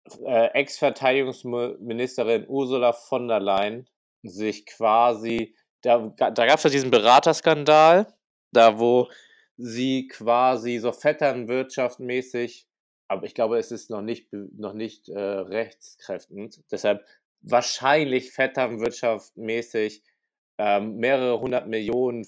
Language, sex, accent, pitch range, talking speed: German, male, German, 110-130 Hz, 90 wpm